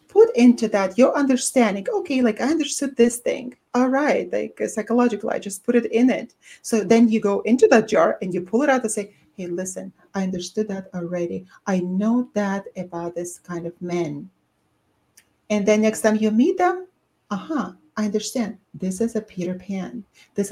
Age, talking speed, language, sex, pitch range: 40-59, 195 wpm, English, female, 175-235 Hz